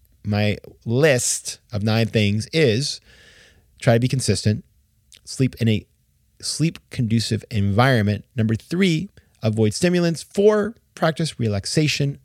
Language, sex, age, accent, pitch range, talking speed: English, male, 30-49, American, 110-155 Hz, 115 wpm